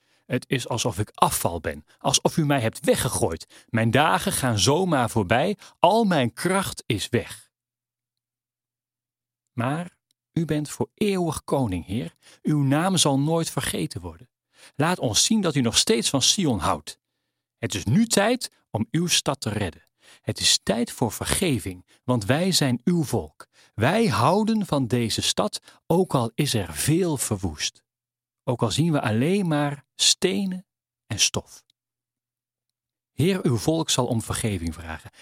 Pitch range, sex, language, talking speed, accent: 115-165 Hz, male, Dutch, 155 wpm, Dutch